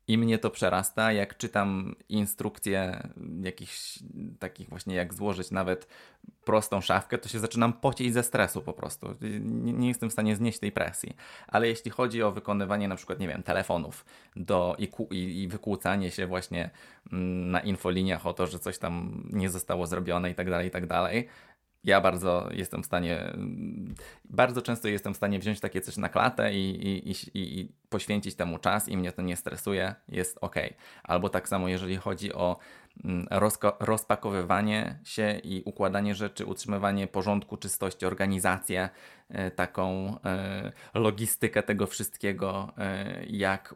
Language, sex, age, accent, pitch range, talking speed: Polish, male, 20-39, native, 95-105 Hz, 150 wpm